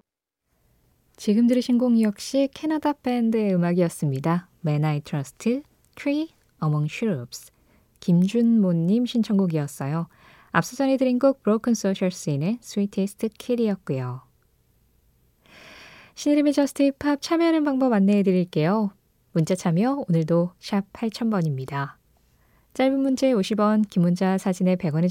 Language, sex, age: Korean, female, 20-39